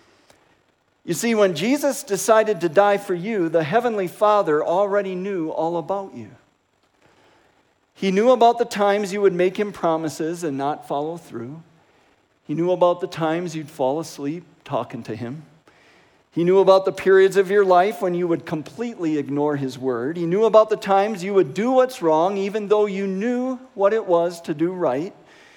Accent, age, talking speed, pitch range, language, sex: American, 50-69, 180 wpm, 155-205 Hz, English, male